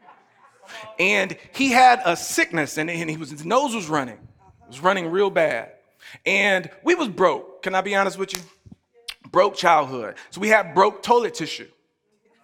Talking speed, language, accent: 175 wpm, English, American